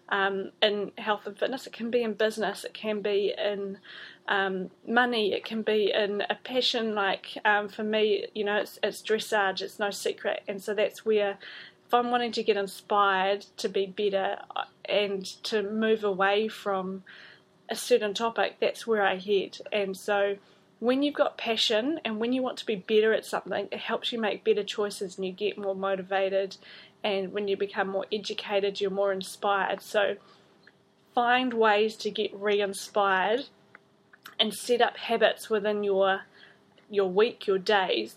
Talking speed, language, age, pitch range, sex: 175 wpm, English, 20-39, 200-225 Hz, female